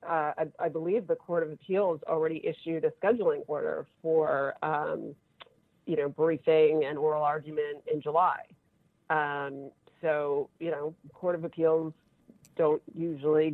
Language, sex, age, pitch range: English, female, 40-59, 155-195 Hz